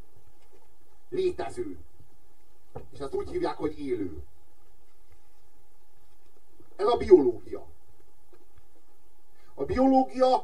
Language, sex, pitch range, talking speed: Hungarian, male, 285-410 Hz, 70 wpm